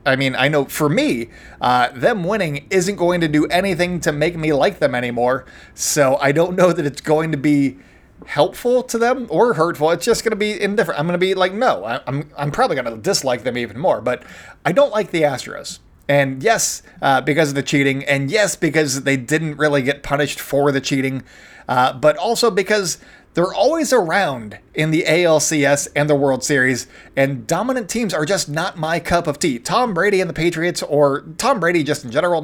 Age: 30-49